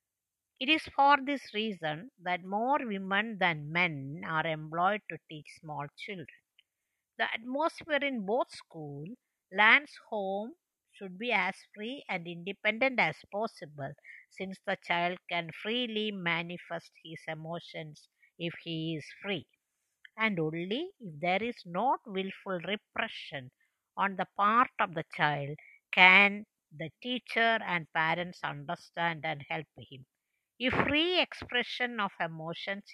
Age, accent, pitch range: 60-79, Indian, 165-220 Hz